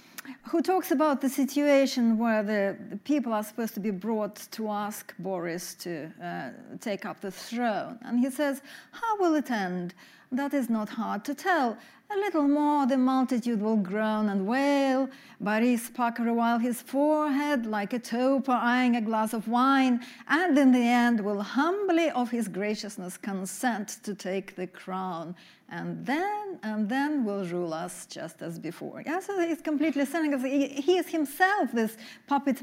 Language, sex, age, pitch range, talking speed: English, female, 40-59, 205-275 Hz, 165 wpm